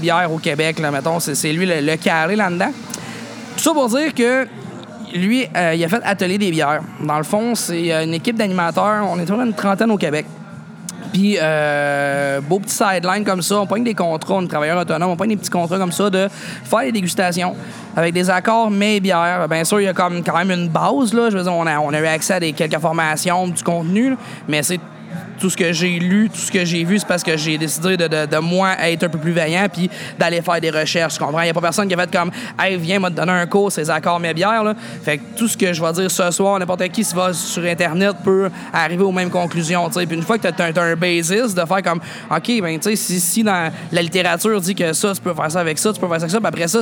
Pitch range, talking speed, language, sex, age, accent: 165-200 Hz, 270 wpm, French, male, 20-39, Canadian